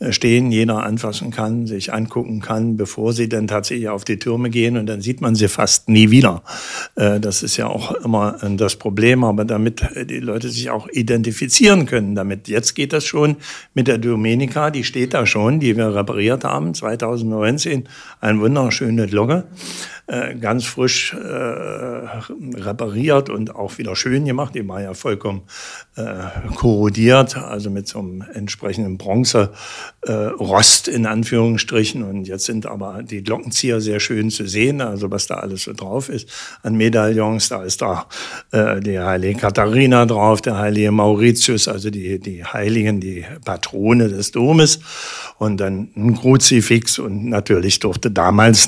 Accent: German